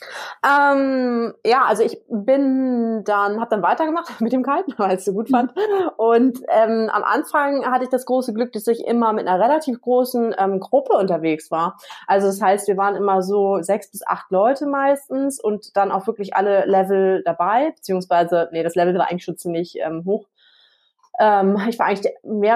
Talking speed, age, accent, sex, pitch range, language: 190 wpm, 20-39, German, female, 190-265 Hz, German